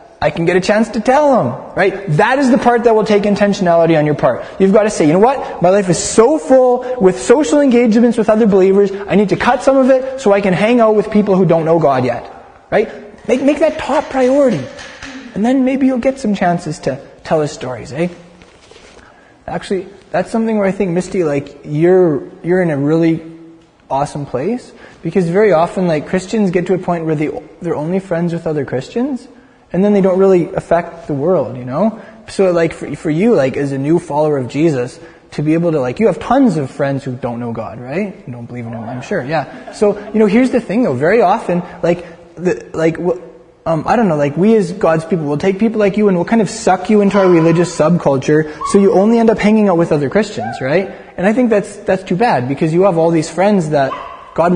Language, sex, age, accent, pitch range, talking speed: English, male, 20-39, American, 165-220 Hz, 235 wpm